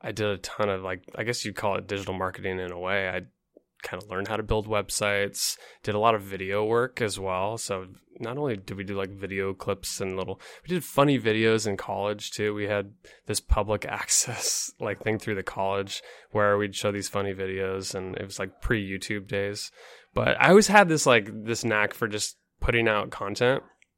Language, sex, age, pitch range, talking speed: English, male, 20-39, 100-115 Hz, 215 wpm